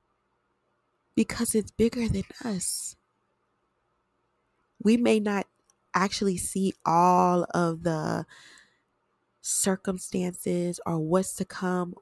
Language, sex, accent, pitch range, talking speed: English, female, American, 195-235 Hz, 90 wpm